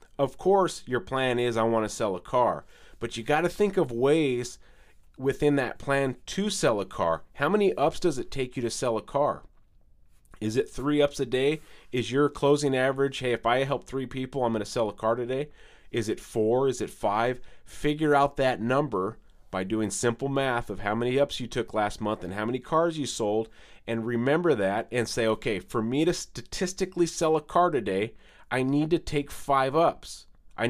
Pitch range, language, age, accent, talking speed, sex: 115-145 Hz, English, 30-49, American, 210 wpm, male